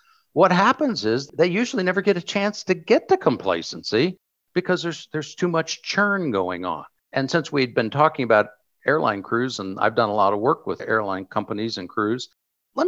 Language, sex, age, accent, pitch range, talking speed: English, male, 50-69, American, 120-200 Hz, 195 wpm